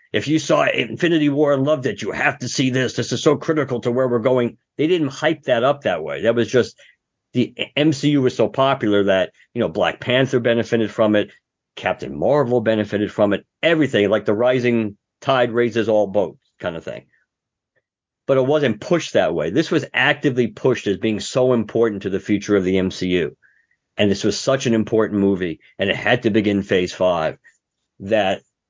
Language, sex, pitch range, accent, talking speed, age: English, male, 100-135 Hz, American, 200 wpm, 50-69